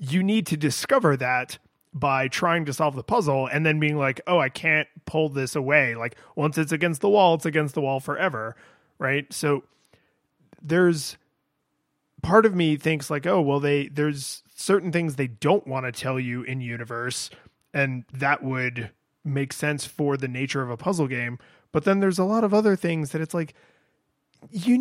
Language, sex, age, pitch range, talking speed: English, male, 20-39, 135-170 Hz, 190 wpm